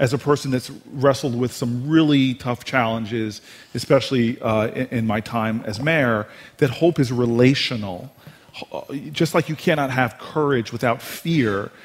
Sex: male